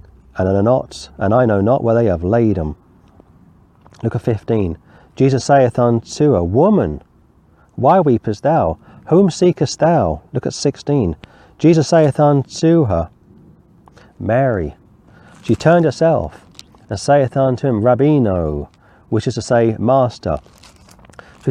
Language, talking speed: English, 130 wpm